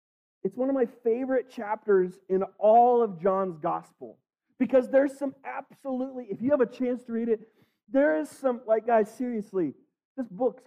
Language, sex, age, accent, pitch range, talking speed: English, male, 40-59, American, 195-260 Hz, 175 wpm